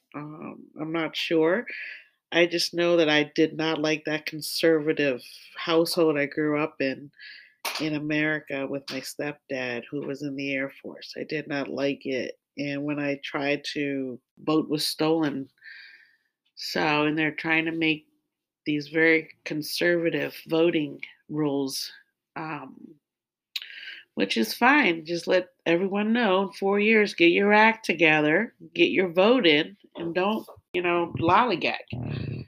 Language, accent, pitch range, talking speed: English, American, 150-220 Hz, 145 wpm